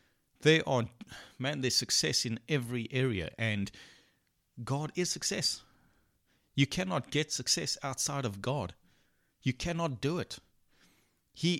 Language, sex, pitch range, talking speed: English, male, 110-130 Hz, 125 wpm